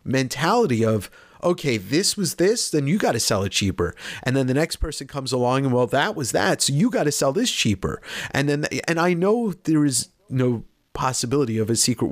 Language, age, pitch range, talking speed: English, 30-49, 115-165 Hz, 220 wpm